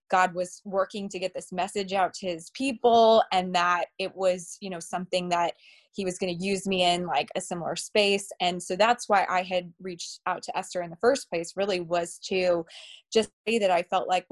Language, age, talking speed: English, 20-39, 220 wpm